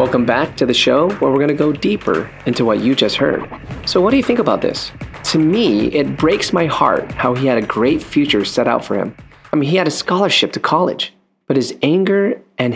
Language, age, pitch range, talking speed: English, 30-49, 115-175 Hz, 240 wpm